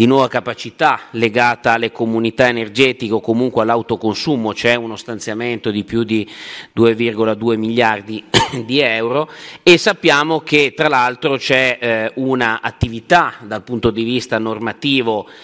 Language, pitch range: Italian, 110-130 Hz